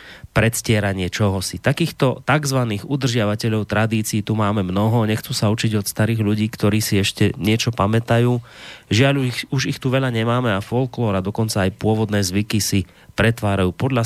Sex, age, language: male, 30-49, Slovak